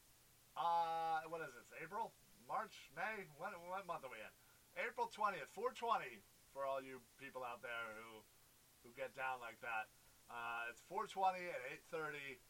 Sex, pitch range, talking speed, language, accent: male, 110-140 Hz, 155 wpm, English, American